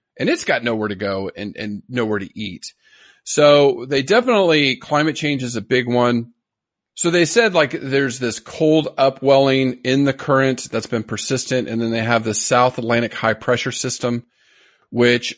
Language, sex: English, male